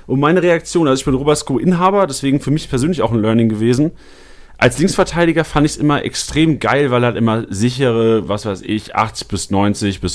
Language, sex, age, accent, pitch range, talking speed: German, male, 30-49, German, 115-150 Hz, 215 wpm